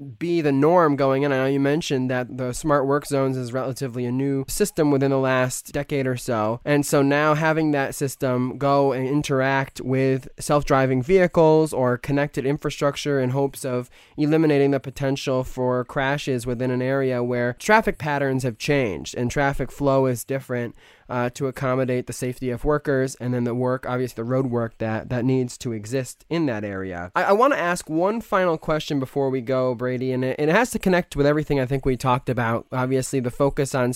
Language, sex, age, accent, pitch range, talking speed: English, male, 20-39, American, 125-150 Hz, 200 wpm